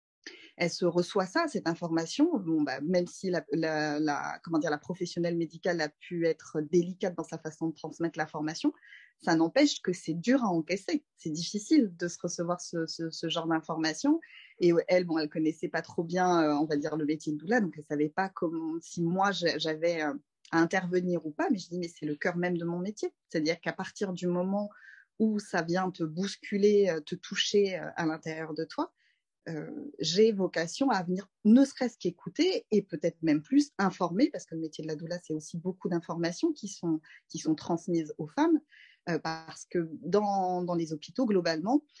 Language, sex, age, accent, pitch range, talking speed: French, female, 20-39, French, 160-200 Hz, 200 wpm